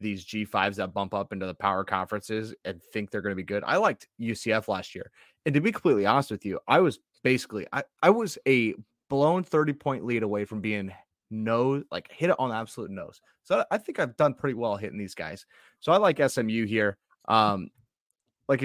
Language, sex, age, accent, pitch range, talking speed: English, male, 30-49, American, 105-135 Hz, 215 wpm